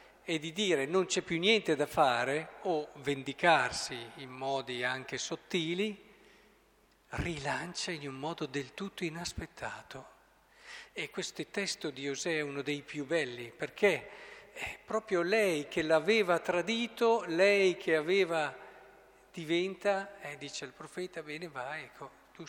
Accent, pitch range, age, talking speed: native, 145-190 Hz, 50-69, 140 wpm